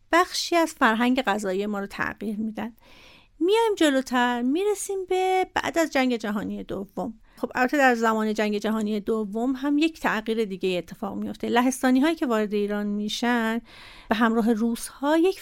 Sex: female